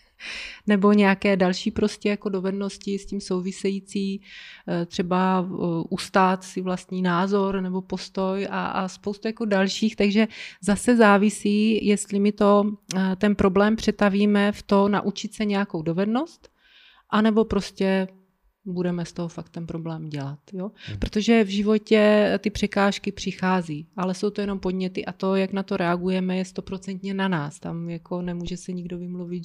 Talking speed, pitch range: 140 wpm, 180-205 Hz